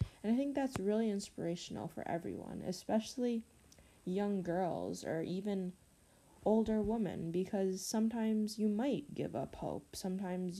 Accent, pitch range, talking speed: American, 170-215 Hz, 130 wpm